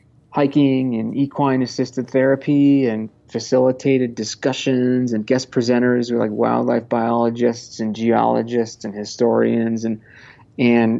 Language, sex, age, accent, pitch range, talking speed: English, male, 30-49, American, 110-125 Hz, 115 wpm